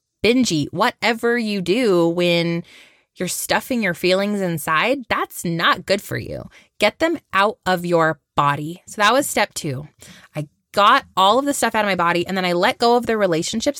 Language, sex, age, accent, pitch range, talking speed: English, female, 20-39, American, 175-235 Hz, 190 wpm